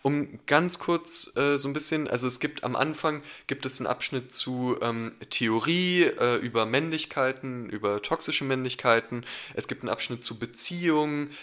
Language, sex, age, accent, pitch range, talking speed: German, male, 20-39, German, 110-135 Hz, 165 wpm